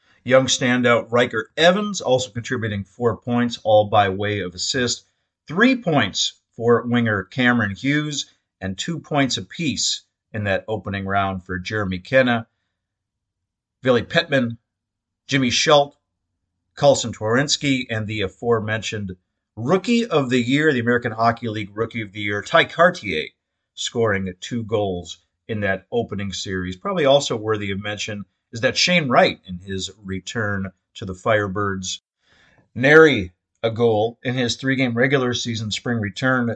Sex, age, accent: male, 40-59, American